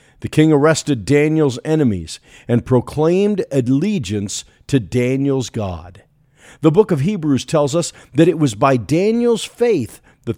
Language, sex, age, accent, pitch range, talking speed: English, male, 50-69, American, 105-150 Hz, 140 wpm